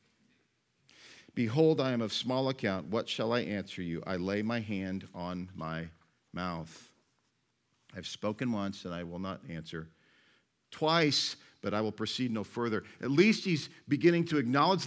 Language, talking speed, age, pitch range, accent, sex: English, 160 wpm, 50-69, 90-135 Hz, American, male